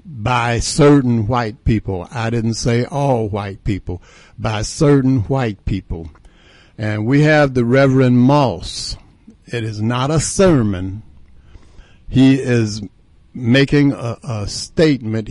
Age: 60-79